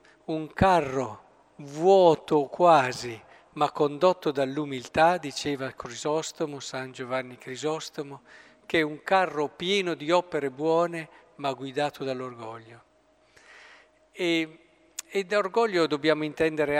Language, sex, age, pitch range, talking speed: Italian, male, 50-69, 140-170 Hz, 105 wpm